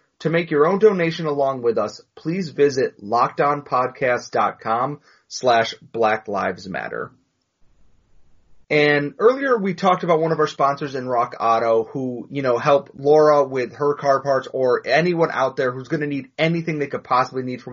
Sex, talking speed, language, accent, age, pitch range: male, 170 wpm, English, American, 30-49, 125-160 Hz